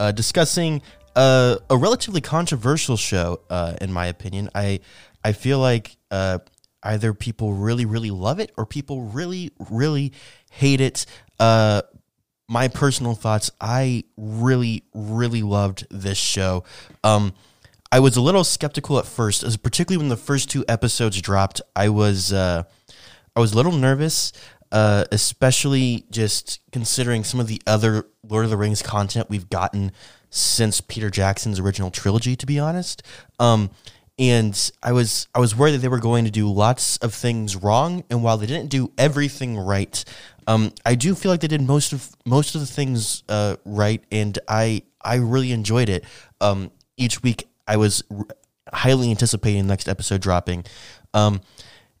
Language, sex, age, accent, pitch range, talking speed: English, male, 20-39, American, 105-130 Hz, 165 wpm